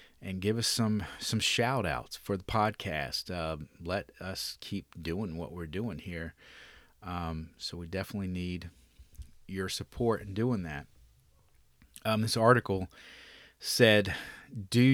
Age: 40-59